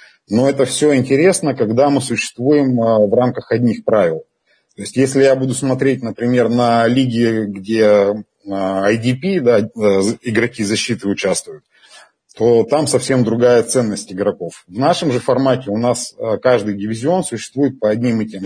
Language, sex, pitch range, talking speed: Russian, male, 110-130 Hz, 145 wpm